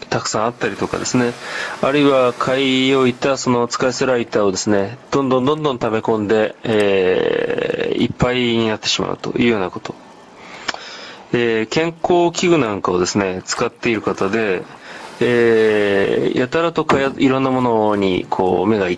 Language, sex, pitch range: Japanese, male, 110-135 Hz